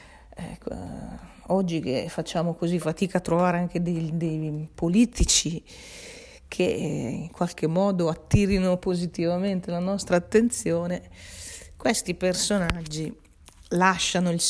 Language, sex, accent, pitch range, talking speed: Italian, female, native, 165-185 Hz, 100 wpm